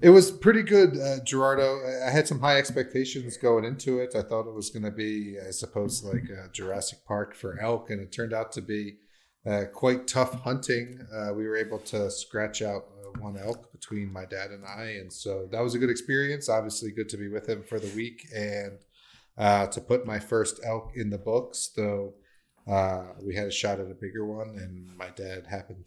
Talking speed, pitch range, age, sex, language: 215 wpm, 100-120 Hz, 30-49, male, English